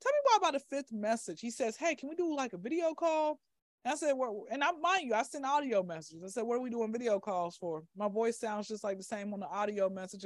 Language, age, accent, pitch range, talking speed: English, 20-39, American, 195-250 Hz, 280 wpm